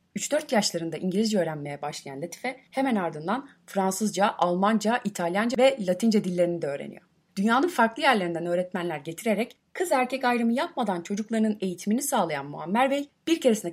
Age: 30-49